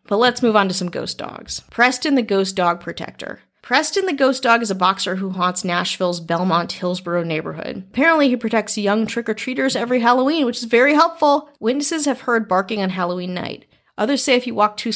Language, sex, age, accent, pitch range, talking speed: English, female, 30-49, American, 180-225 Hz, 200 wpm